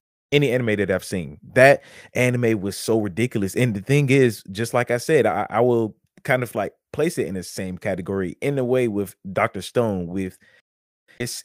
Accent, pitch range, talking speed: American, 95-125 Hz, 200 wpm